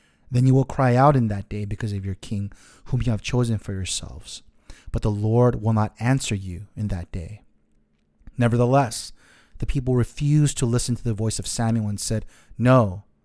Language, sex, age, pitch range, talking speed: English, male, 30-49, 105-130 Hz, 190 wpm